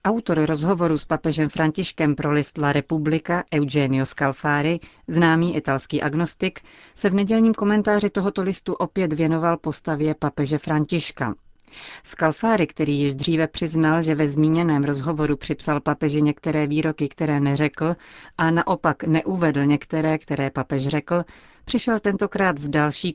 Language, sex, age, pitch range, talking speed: Czech, female, 40-59, 150-175 Hz, 130 wpm